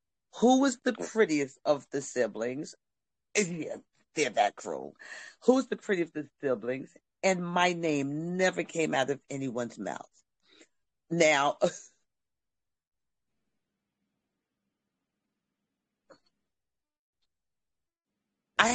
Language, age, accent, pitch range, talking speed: Russian, 50-69, American, 135-185 Hz, 95 wpm